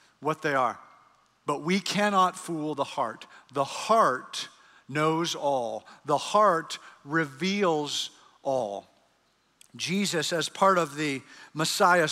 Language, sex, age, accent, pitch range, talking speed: English, male, 50-69, American, 150-190 Hz, 115 wpm